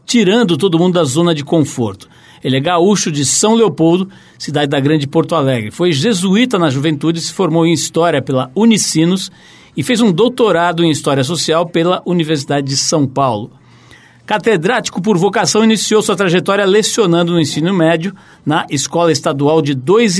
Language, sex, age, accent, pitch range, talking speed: Portuguese, male, 60-79, Brazilian, 150-195 Hz, 165 wpm